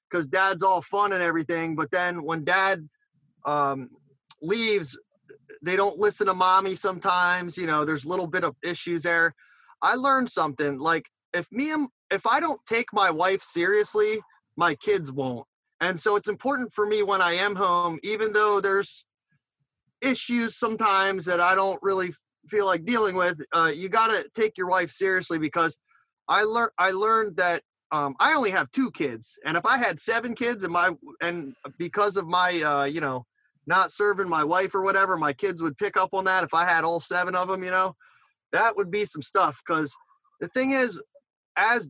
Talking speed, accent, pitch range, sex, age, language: 190 wpm, American, 165-210 Hz, male, 30-49, English